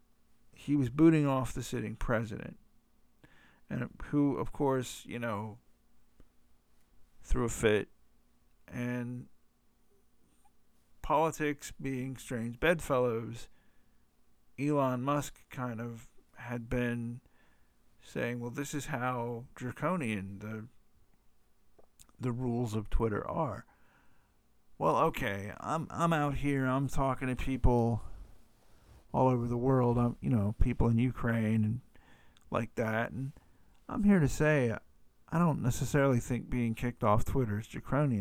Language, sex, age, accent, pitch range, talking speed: English, male, 50-69, American, 110-130 Hz, 120 wpm